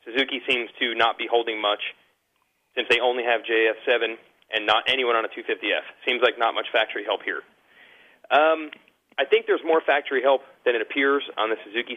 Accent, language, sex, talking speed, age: American, English, male, 190 wpm, 30-49